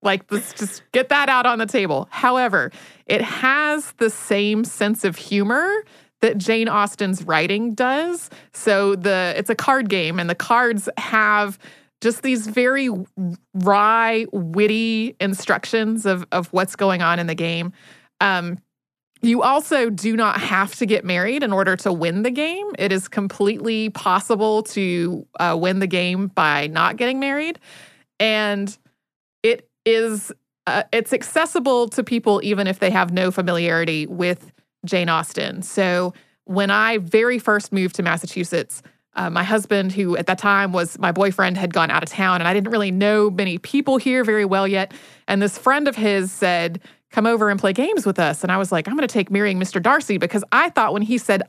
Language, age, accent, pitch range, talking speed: English, 30-49, American, 190-240 Hz, 180 wpm